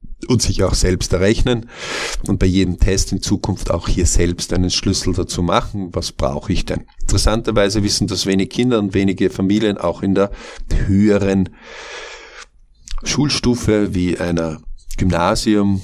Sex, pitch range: male, 95-115 Hz